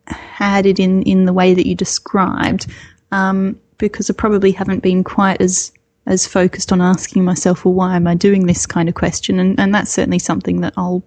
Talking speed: 205 wpm